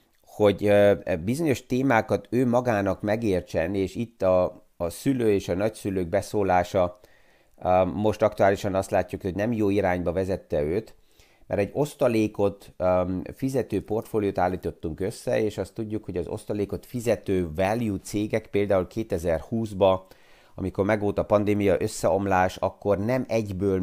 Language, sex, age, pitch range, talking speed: Hungarian, male, 30-49, 95-110 Hz, 130 wpm